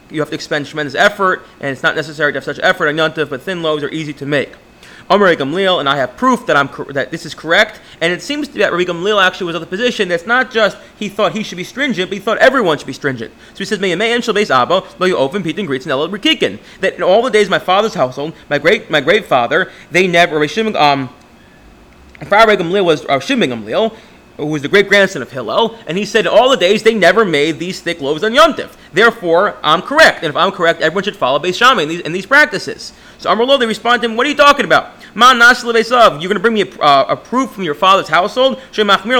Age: 30-49